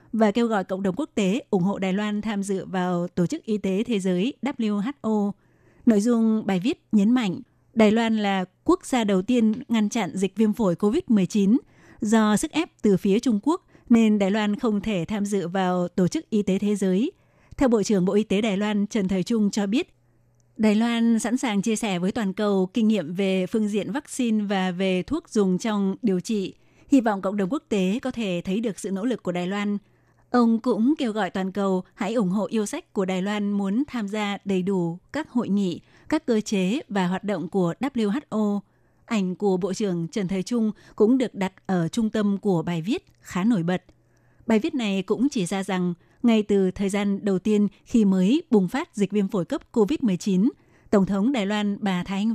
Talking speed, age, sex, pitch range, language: 220 wpm, 20-39, female, 190-230 Hz, Vietnamese